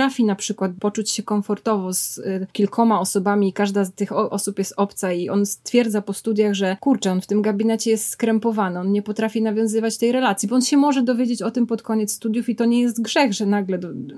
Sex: female